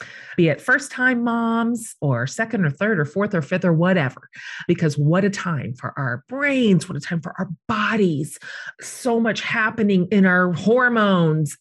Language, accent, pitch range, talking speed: English, American, 155-205 Hz, 175 wpm